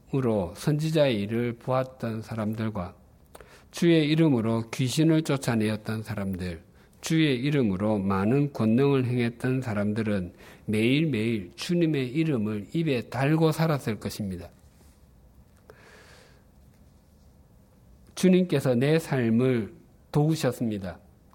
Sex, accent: male, native